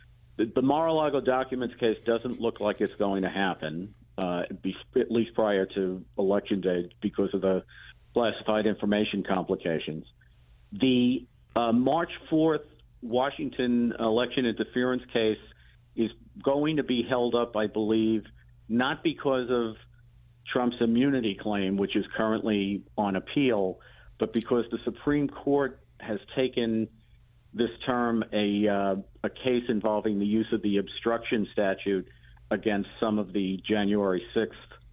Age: 50-69